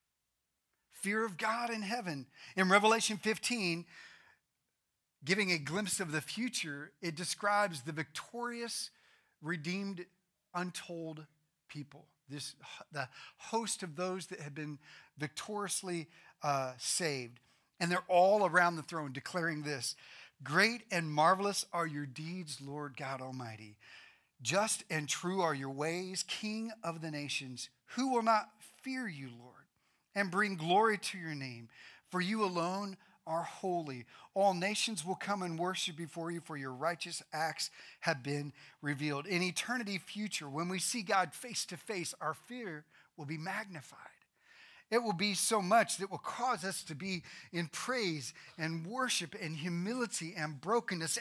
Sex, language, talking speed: male, English, 145 wpm